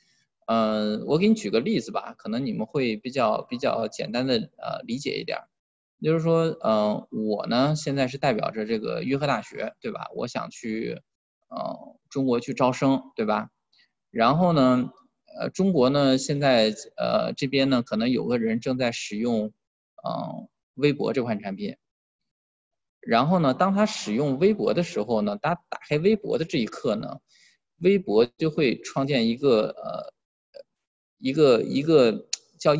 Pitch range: 130-215 Hz